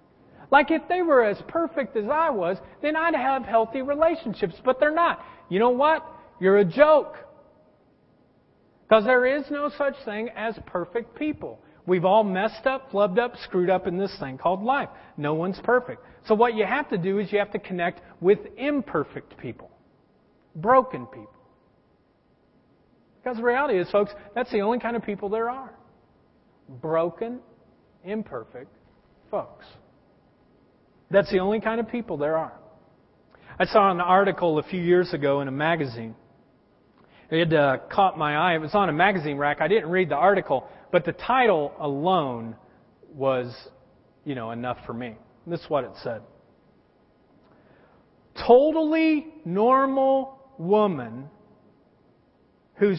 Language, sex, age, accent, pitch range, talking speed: English, male, 40-59, American, 170-255 Hz, 150 wpm